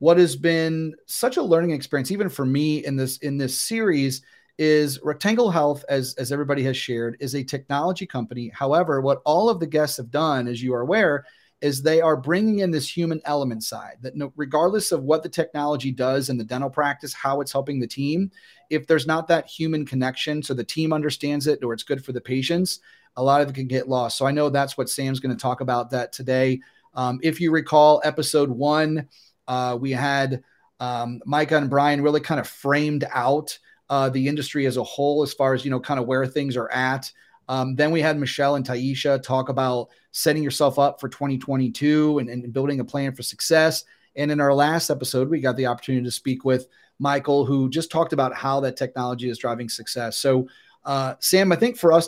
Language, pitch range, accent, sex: English, 130-150 Hz, American, male